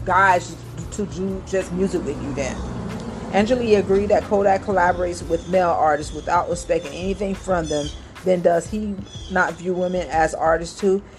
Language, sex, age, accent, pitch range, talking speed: English, female, 40-59, American, 165-210 Hz, 160 wpm